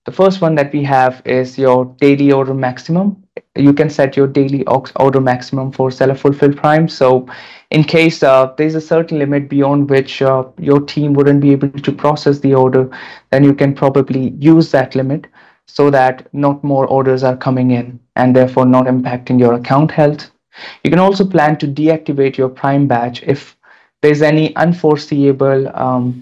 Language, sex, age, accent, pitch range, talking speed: English, male, 20-39, Indian, 130-150 Hz, 180 wpm